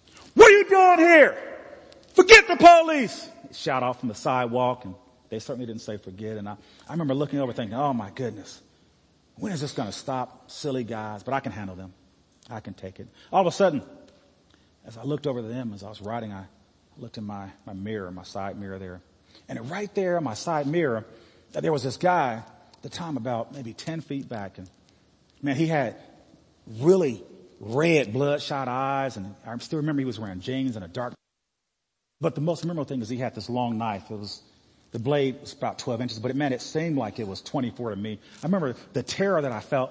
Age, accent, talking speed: 40-59, American, 210 wpm